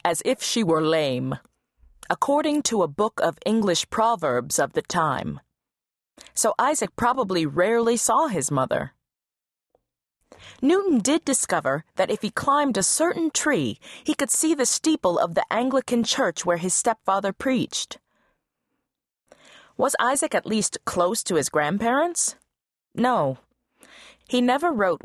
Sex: female